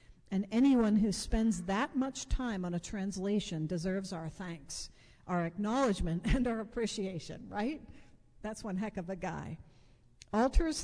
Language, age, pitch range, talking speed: English, 50-69, 180-230 Hz, 145 wpm